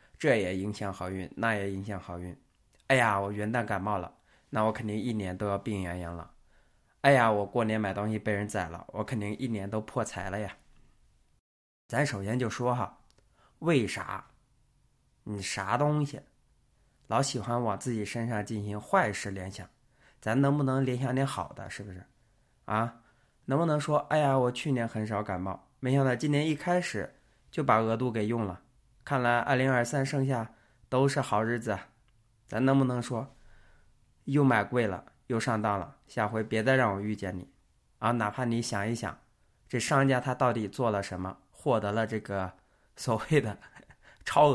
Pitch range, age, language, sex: 100-125 Hz, 20-39, Chinese, male